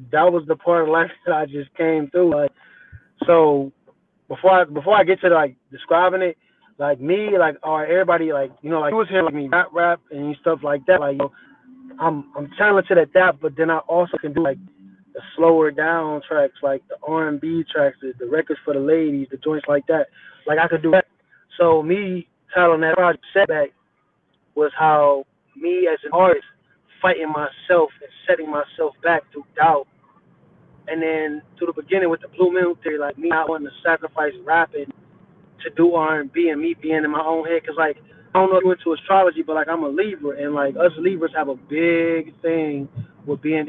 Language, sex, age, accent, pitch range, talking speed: English, male, 20-39, American, 150-180 Hz, 210 wpm